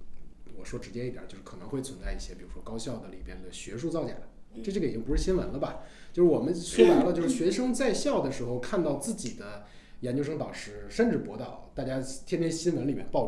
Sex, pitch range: male, 115-180 Hz